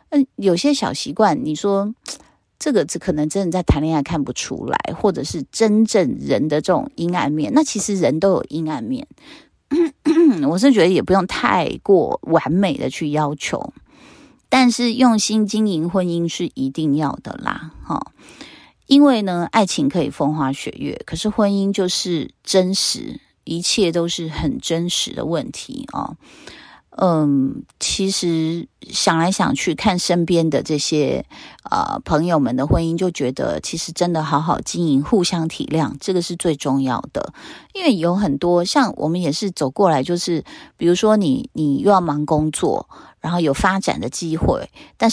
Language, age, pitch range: Chinese, 30-49, 155-215 Hz